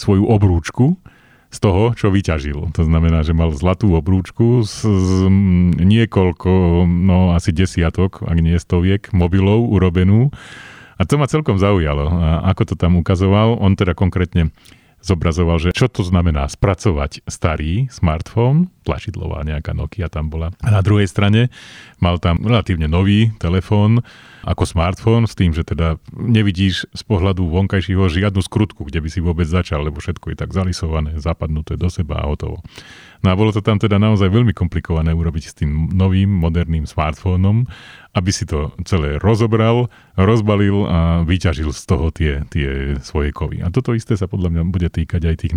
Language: Slovak